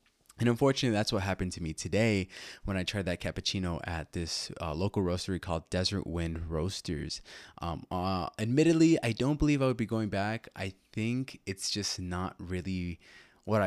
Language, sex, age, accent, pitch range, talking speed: English, male, 20-39, American, 85-110 Hz, 175 wpm